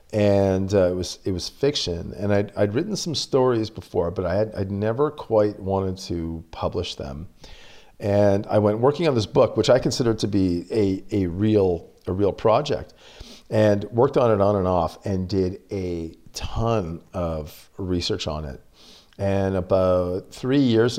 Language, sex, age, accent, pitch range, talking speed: English, male, 40-59, American, 90-110 Hz, 175 wpm